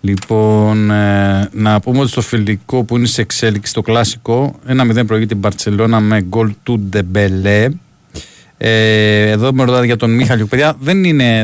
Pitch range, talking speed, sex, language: 110-135 Hz, 165 wpm, male, Greek